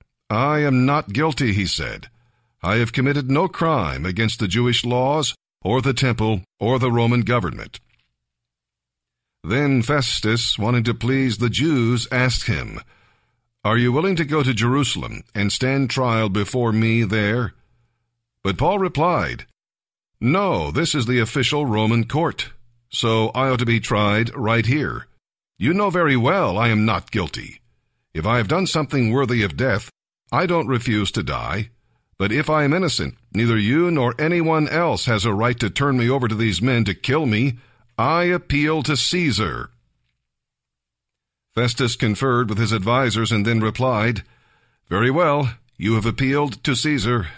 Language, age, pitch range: English, 50-69, 110-135 Hz